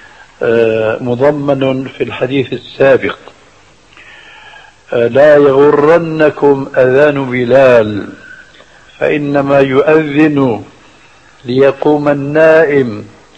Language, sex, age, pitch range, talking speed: Arabic, male, 60-79, 135-165 Hz, 55 wpm